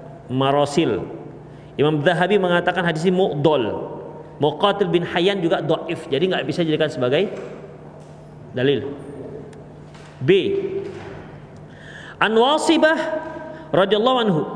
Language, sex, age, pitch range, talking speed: Indonesian, male, 40-59, 170-230 Hz, 90 wpm